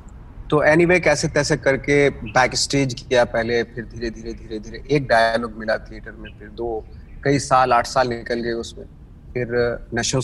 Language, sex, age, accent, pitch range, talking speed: Hindi, male, 30-49, native, 115-135 Hz, 175 wpm